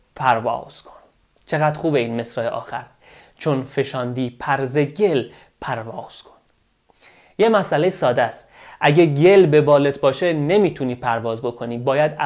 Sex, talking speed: male, 125 wpm